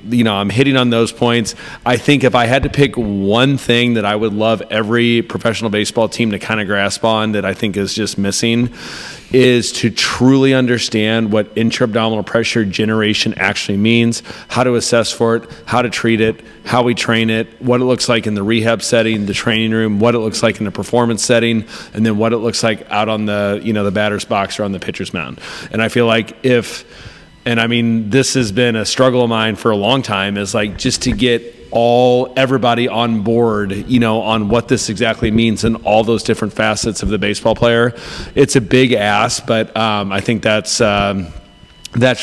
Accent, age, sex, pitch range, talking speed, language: American, 30-49, male, 110-120 Hz, 215 wpm, English